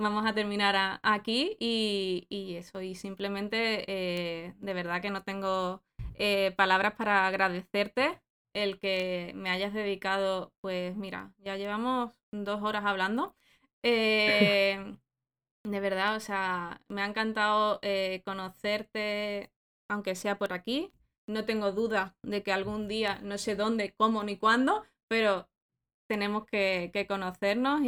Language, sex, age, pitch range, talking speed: Spanish, female, 20-39, 190-220 Hz, 135 wpm